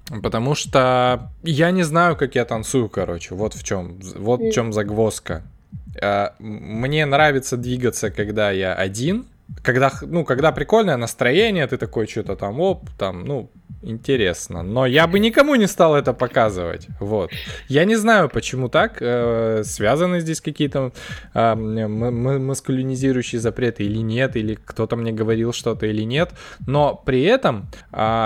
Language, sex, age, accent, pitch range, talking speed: Russian, male, 20-39, native, 110-140 Hz, 145 wpm